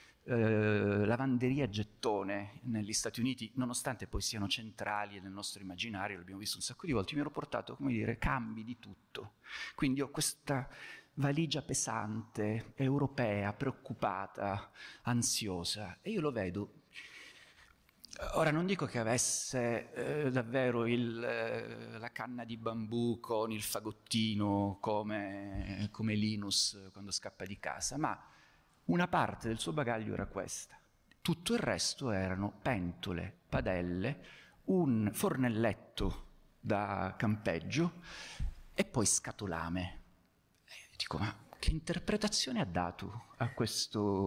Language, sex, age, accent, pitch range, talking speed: Italian, male, 30-49, native, 100-130 Hz, 120 wpm